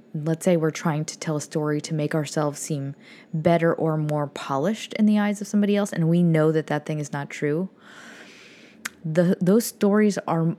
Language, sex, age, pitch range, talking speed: English, female, 20-39, 155-200 Hz, 200 wpm